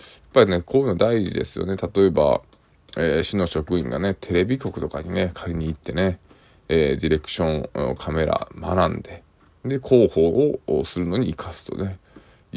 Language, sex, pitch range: Japanese, male, 80-105 Hz